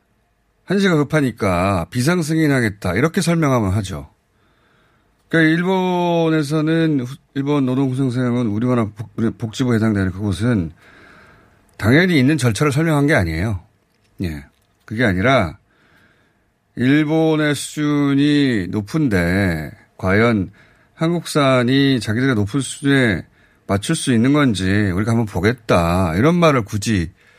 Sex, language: male, Korean